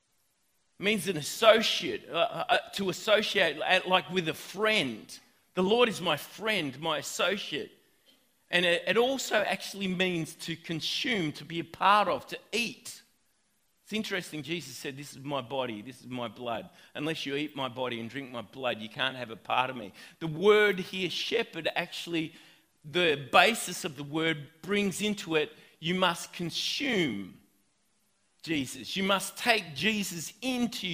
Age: 40-59